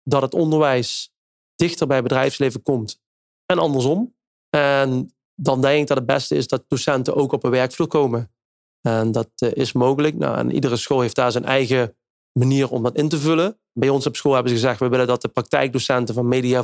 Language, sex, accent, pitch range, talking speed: Dutch, male, Dutch, 125-145 Hz, 205 wpm